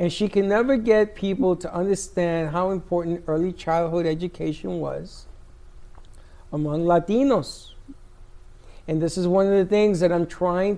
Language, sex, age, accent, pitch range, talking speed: English, male, 60-79, American, 165-210 Hz, 145 wpm